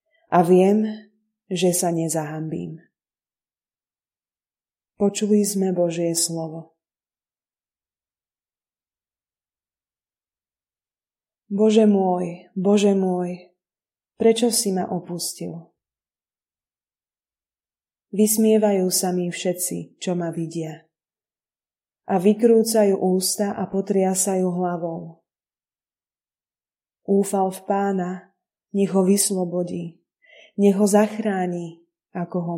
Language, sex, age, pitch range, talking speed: Slovak, female, 20-39, 175-205 Hz, 75 wpm